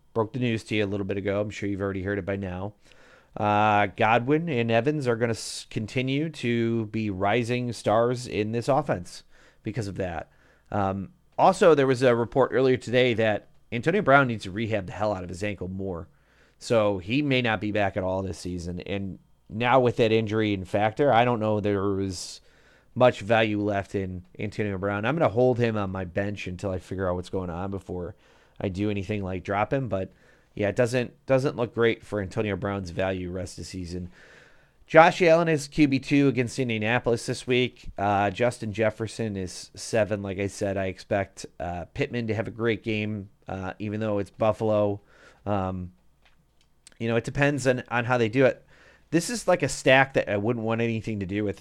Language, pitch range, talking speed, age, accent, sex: English, 100-120 Hz, 205 wpm, 30-49, American, male